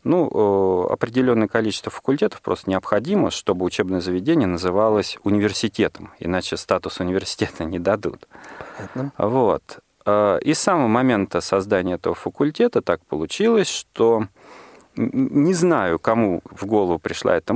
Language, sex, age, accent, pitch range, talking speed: Russian, male, 30-49, native, 100-155 Hz, 115 wpm